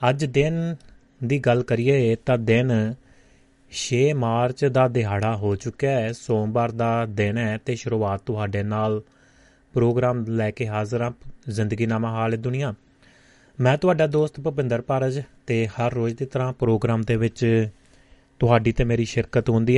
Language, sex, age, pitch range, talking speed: Punjabi, male, 30-49, 110-130 Hz, 150 wpm